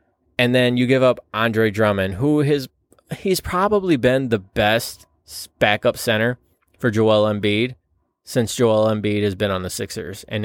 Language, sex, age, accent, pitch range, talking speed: English, male, 20-39, American, 105-135 Hz, 155 wpm